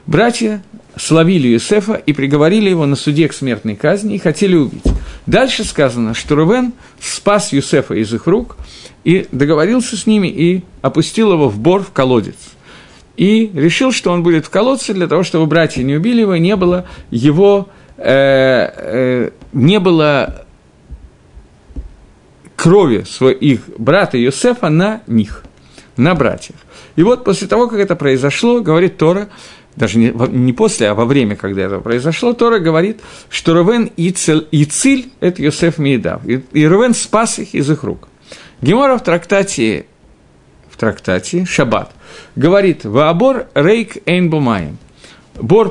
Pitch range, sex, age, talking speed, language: 140-210 Hz, male, 50-69, 140 wpm, Russian